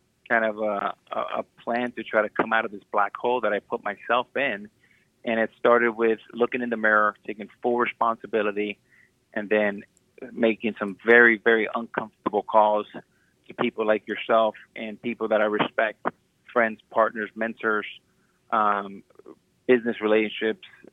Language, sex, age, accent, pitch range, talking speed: English, male, 30-49, American, 105-120 Hz, 150 wpm